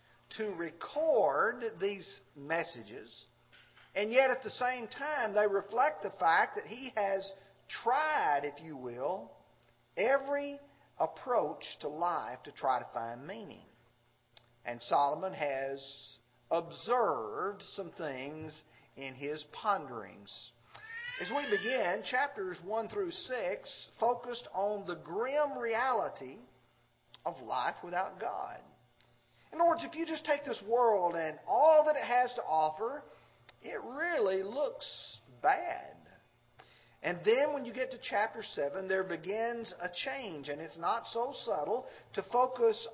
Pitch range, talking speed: 170-285 Hz, 130 wpm